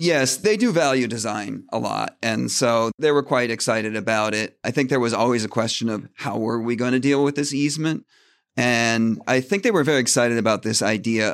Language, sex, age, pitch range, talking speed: English, male, 40-59, 115-140 Hz, 220 wpm